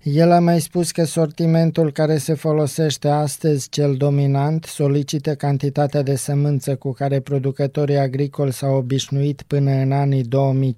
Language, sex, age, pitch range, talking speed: Romanian, male, 20-39, 135-150 Hz, 140 wpm